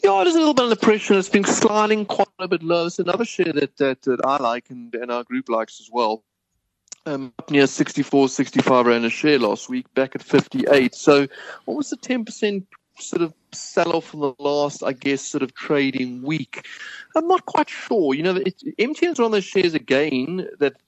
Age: 30-49